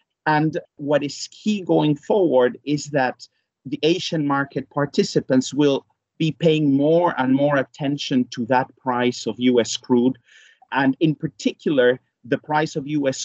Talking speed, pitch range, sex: 145 wpm, 120-155 Hz, male